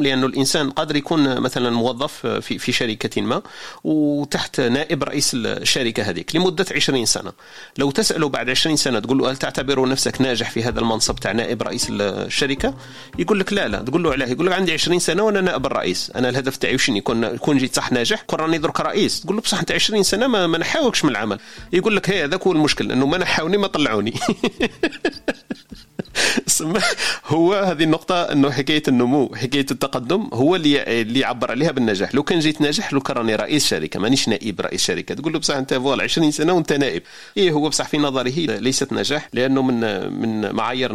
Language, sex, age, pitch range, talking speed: Arabic, male, 40-59, 115-155 Hz, 190 wpm